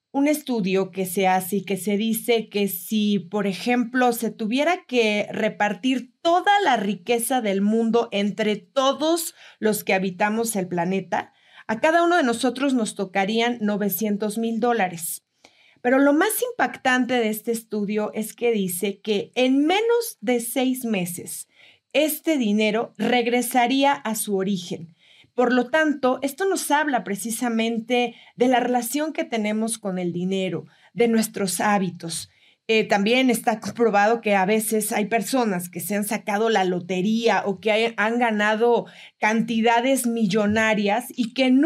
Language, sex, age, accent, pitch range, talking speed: Spanish, female, 30-49, Mexican, 205-250 Hz, 150 wpm